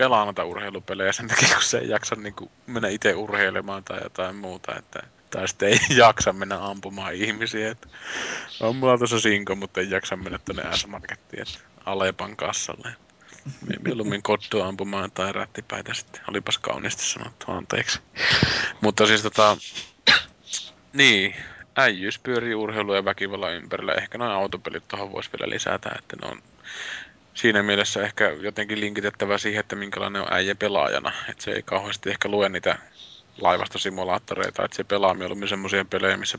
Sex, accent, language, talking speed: male, native, Finnish, 150 wpm